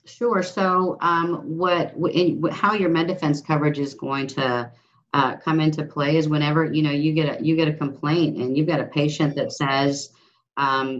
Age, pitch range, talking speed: 40-59, 130-155 Hz, 190 wpm